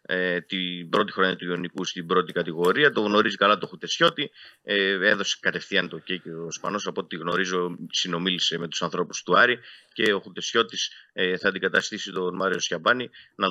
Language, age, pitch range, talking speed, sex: Greek, 30-49, 90-120 Hz, 170 wpm, male